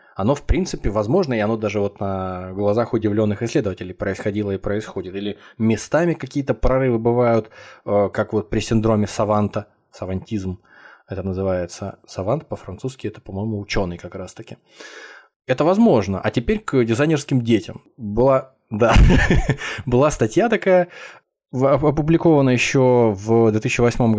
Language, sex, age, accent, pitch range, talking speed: Russian, male, 20-39, native, 100-125 Hz, 120 wpm